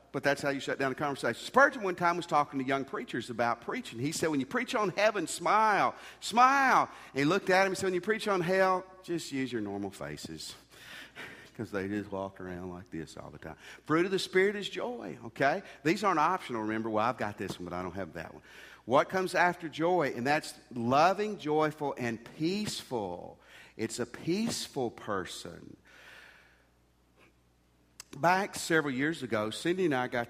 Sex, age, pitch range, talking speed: male, 50-69, 105-165 Hz, 190 wpm